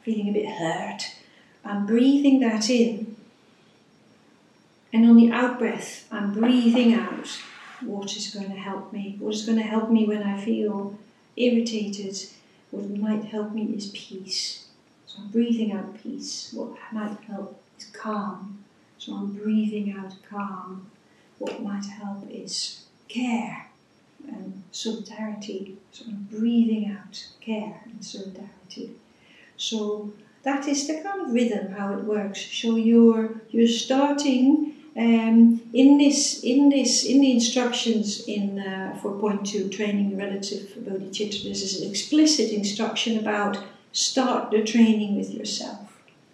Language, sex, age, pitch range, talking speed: English, female, 40-59, 205-235 Hz, 140 wpm